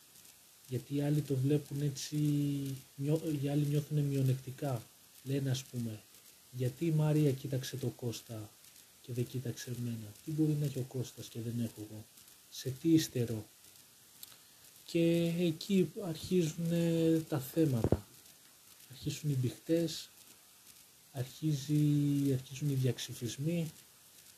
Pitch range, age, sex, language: 125-155 Hz, 40-59, male, Greek